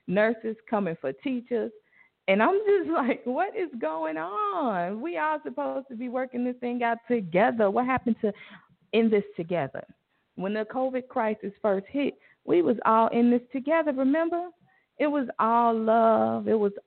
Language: English